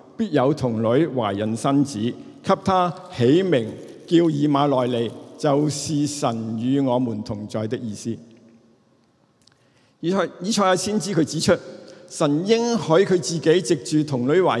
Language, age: Chinese, 50-69